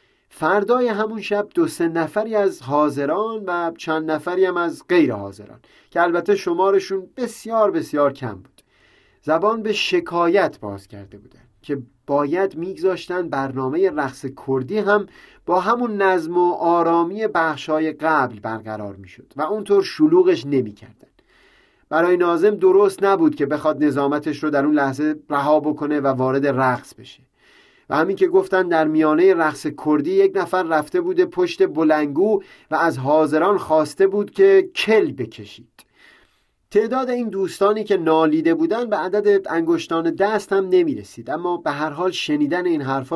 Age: 30-49